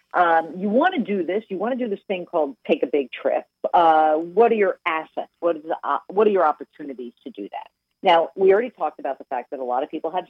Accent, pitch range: American, 150-220 Hz